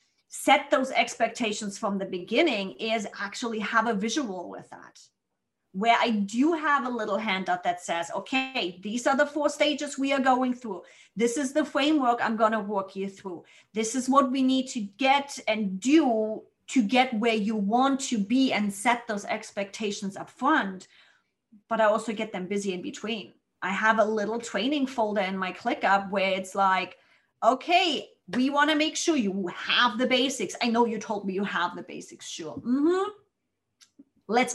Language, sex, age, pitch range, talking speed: English, female, 30-49, 205-270 Hz, 185 wpm